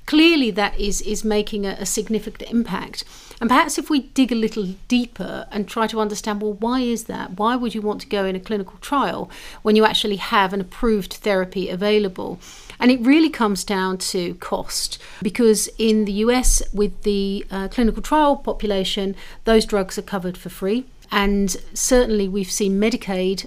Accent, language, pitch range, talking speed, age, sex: British, English, 195-230 Hz, 180 wpm, 50-69, female